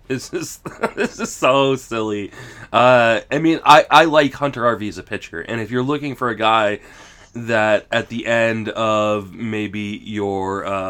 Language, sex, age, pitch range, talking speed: English, male, 20-39, 105-125 Hz, 170 wpm